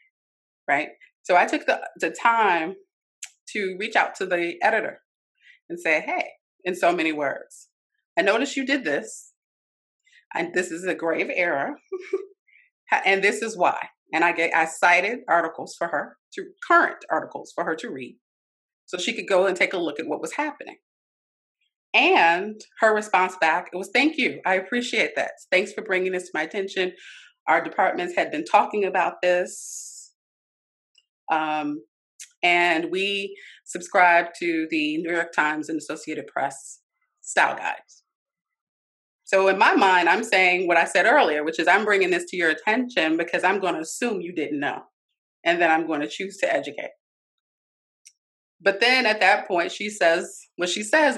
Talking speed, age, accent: 170 wpm, 30-49, American